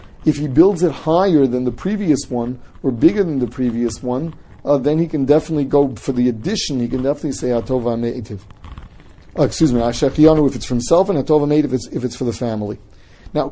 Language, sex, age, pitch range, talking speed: English, male, 40-59, 120-160 Hz, 220 wpm